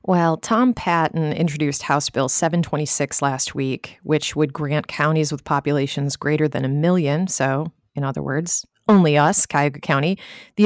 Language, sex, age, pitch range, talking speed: English, female, 30-49, 140-170 Hz, 160 wpm